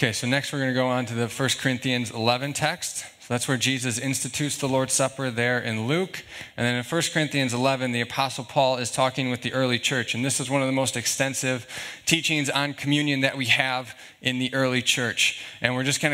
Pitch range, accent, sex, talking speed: 125-145 Hz, American, male, 230 wpm